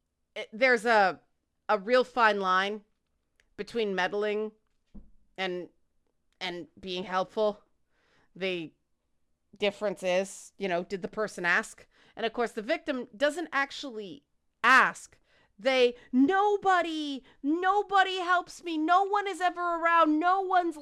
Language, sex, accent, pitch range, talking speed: English, female, American, 190-280 Hz, 120 wpm